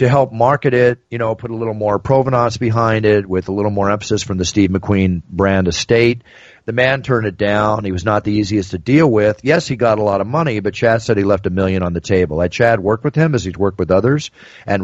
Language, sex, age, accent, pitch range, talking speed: English, male, 40-59, American, 95-130 Hz, 265 wpm